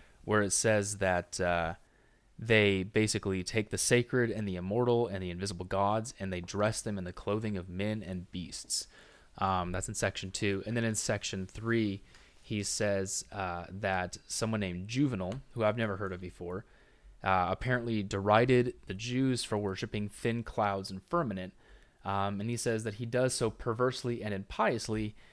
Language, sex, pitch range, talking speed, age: English, male, 100-120 Hz, 175 wpm, 20-39